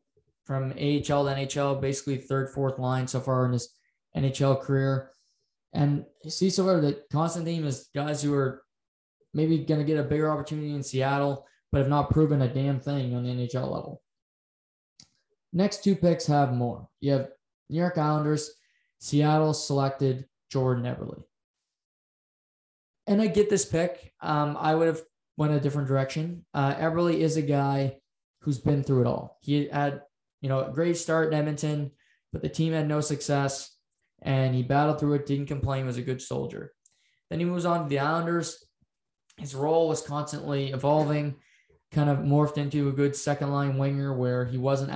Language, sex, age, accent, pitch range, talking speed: English, male, 20-39, American, 135-155 Hz, 180 wpm